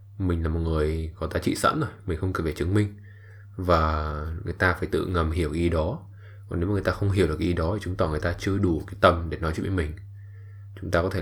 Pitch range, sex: 80-100 Hz, male